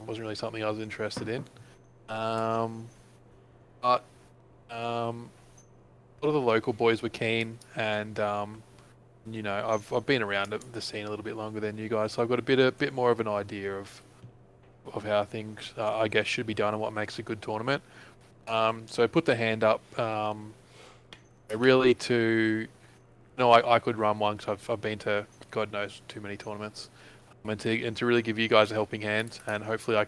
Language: English